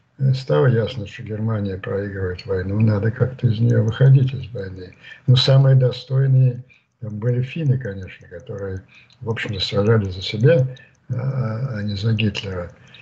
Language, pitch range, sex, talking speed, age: Russian, 110-135 Hz, male, 135 wpm, 60-79